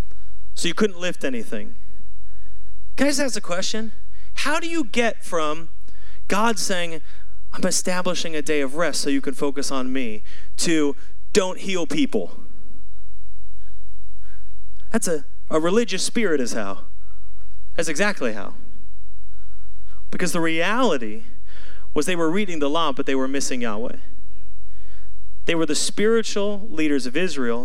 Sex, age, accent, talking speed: male, 30-49, American, 145 wpm